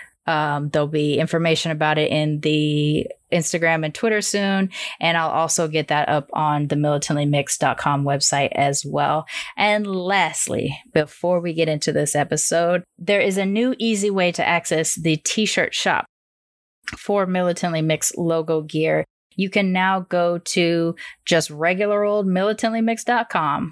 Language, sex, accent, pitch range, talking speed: English, female, American, 155-185 Hz, 145 wpm